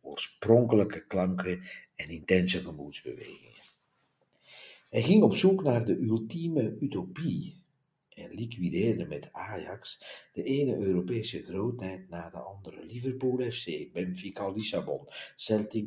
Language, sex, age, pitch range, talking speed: Dutch, male, 60-79, 90-115 Hz, 110 wpm